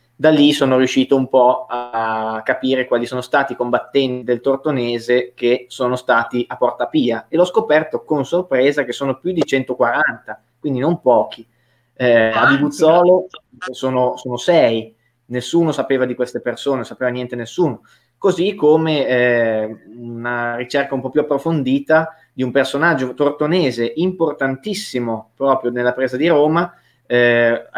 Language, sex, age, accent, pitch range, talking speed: Italian, male, 20-39, native, 120-150 Hz, 150 wpm